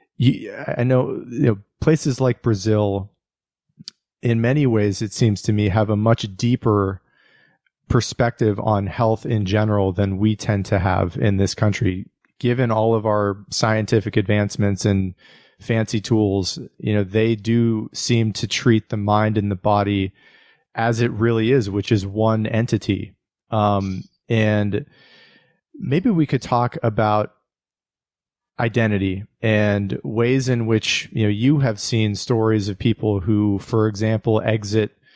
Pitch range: 105-120 Hz